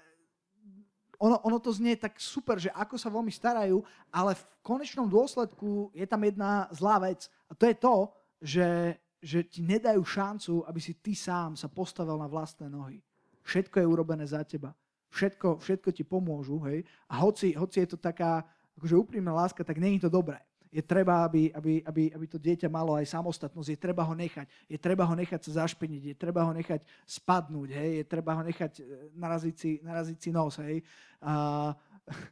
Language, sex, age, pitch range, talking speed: Slovak, male, 30-49, 160-195 Hz, 180 wpm